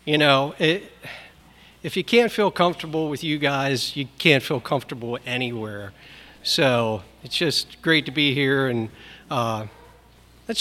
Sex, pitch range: male, 120-150 Hz